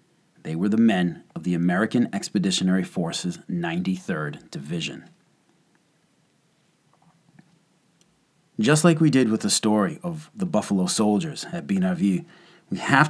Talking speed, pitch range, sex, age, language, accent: 120 wpm, 105-175 Hz, male, 30-49, English, American